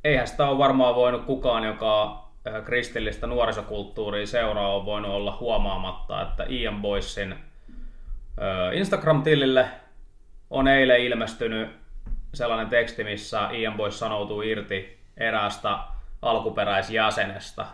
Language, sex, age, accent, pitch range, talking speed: Finnish, male, 20-39, native, 100-130 Hz, 105 wpm